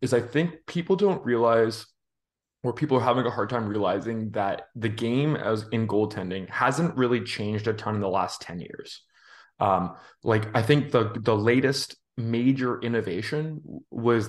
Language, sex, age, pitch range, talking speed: English, male, 20-39, 105-120 Hz, 170 wpm